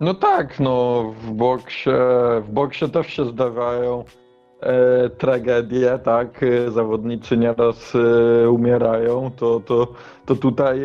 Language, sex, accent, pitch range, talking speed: Polish, male, native, 125-140 Hz, 115 wpm